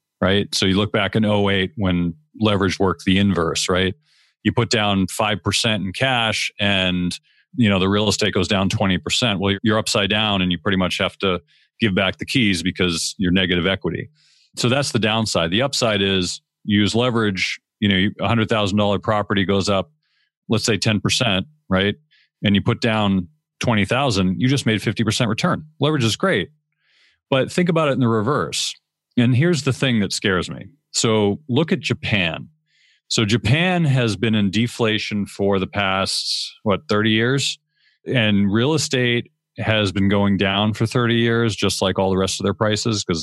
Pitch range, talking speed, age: 95-120 Hz, 180 wpm, 40-59